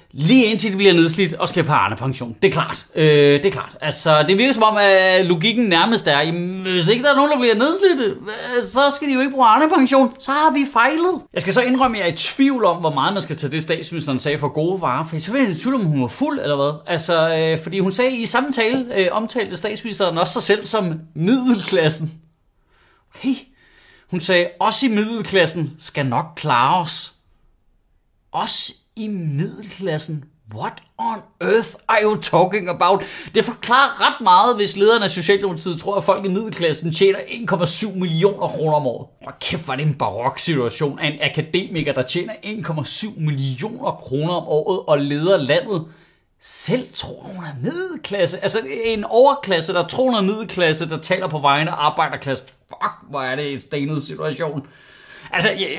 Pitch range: 155-220 Hz